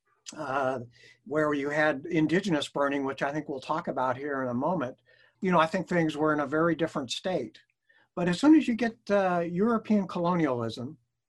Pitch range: 140-175 Hz